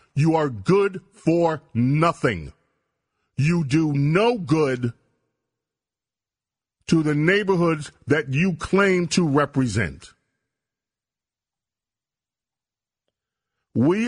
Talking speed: 75 wpm